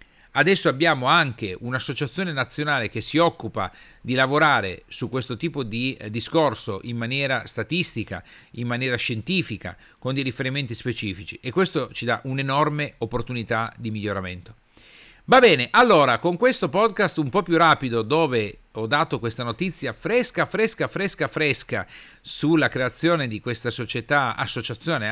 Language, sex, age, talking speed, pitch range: Italian, male, 40-59, 140 wpm, 115-150 Hz